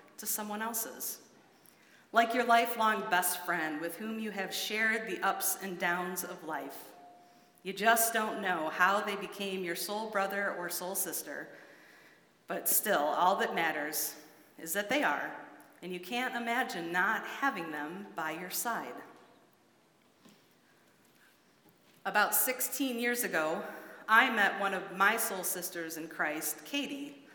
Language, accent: English, American